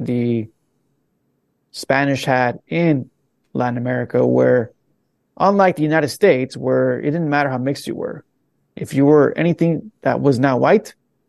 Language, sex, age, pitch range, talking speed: English, male, 30-49, 130-155 Hz, 145 wpm